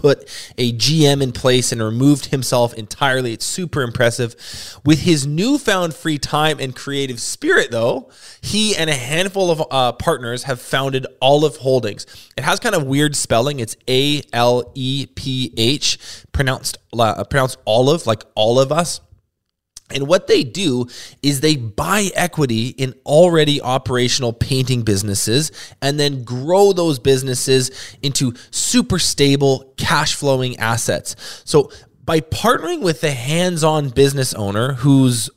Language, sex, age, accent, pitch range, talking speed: English, male, 20-39, American, 120-155 Hz, 135 wpm